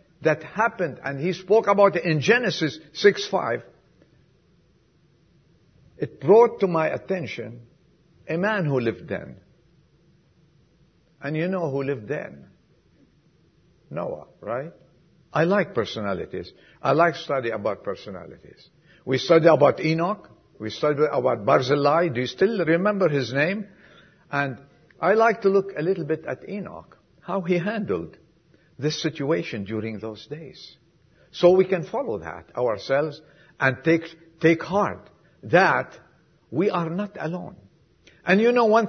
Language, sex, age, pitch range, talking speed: English, male, 60-79, 145-185 Hz, 135 wpm